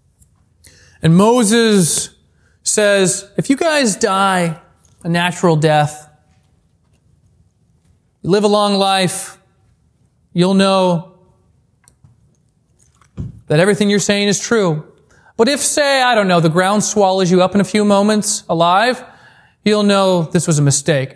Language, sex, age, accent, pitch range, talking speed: English, male, 30-49, American, 165-215 Hz, 125 wpm